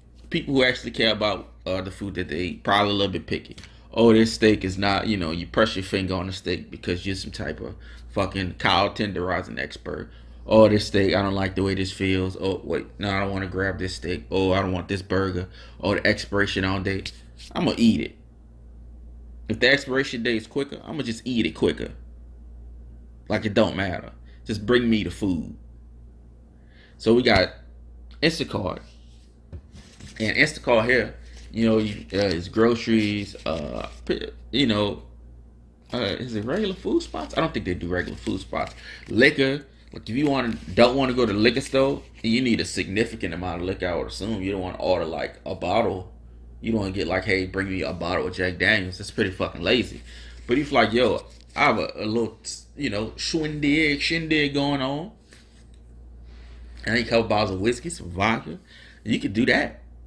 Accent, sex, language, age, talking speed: American, male, English, 20-39, 200 wpm